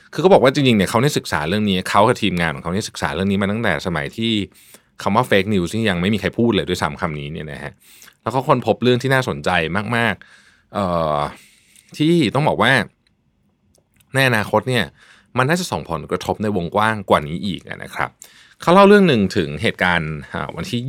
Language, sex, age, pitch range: Thai, male, 20-39, 90-120 Hz